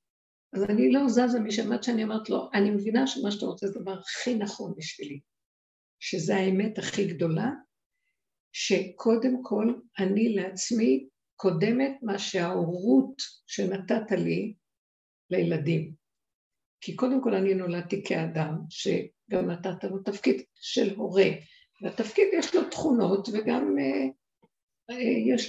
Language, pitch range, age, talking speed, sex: Hebrew, 190-250 Hz, 50-69, 120 wpm, female